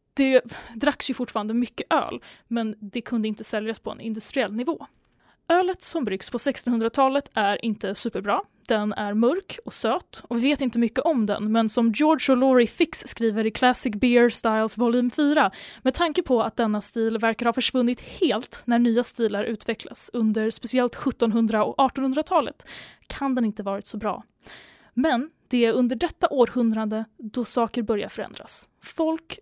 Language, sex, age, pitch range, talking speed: Swedish, female, 10-29, 225-275 Hz, 170 wpm